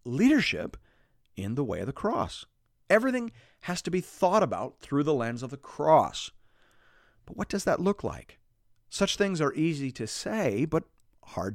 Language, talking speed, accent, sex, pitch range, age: English, 170 wpm, American, male, 130-220 Hz, 40-59